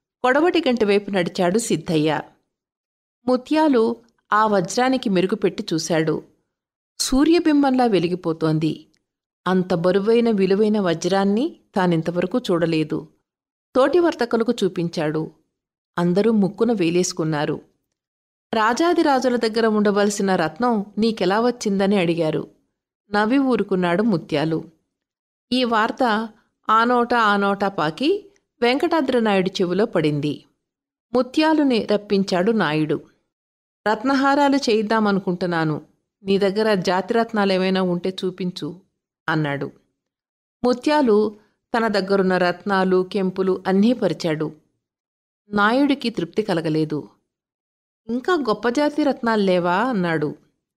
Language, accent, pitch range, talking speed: Telugu, native, 180-240 Hz, 80 wpm